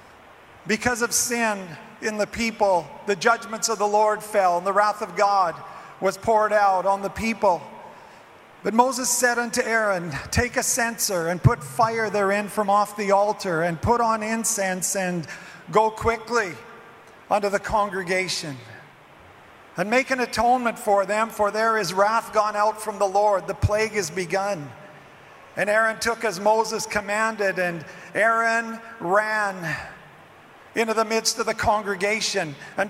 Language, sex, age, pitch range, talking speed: English, male, 40-59, 200-225 Hz, 155 wpm